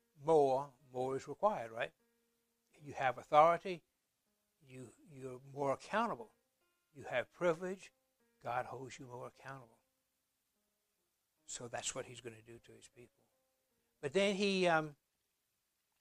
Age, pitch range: 60-79, 125-155 Hz